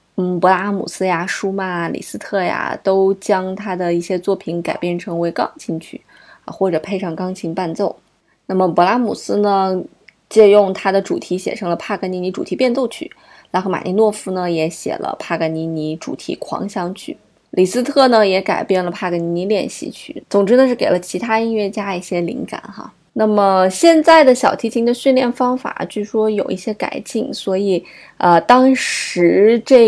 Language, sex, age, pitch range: Chinese, female, 20-39, 180-220 Hz